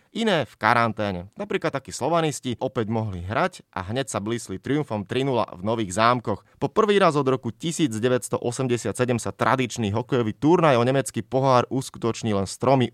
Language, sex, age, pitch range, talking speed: Slovak, male, 30-49, 110-140 Hz, 160 wpm